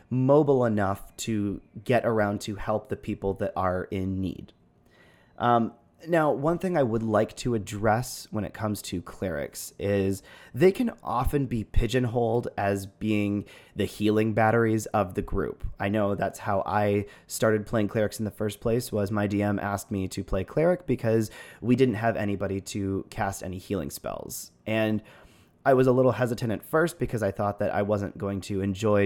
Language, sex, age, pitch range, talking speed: English, male, 30-49, 100-115 Hz, 180 wpm